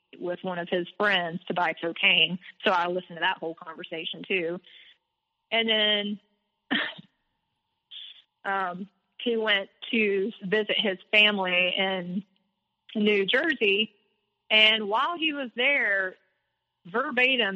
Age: 30-49